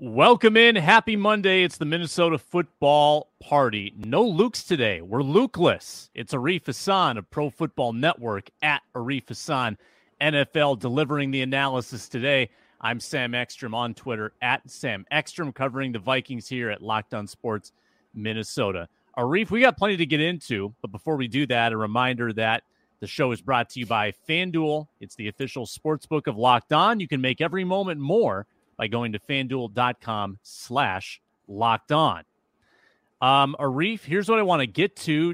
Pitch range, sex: 120-170 Hz, male